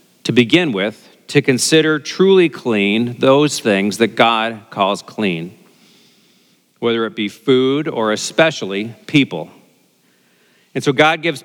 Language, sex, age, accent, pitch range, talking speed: English, male, 40-59, American, 115-150 Hz, 125 wpm